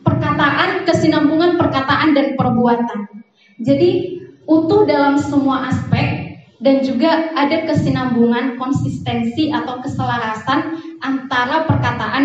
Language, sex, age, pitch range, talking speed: Indonesian, female, 20-39, 230-310 Hz, 95 wpm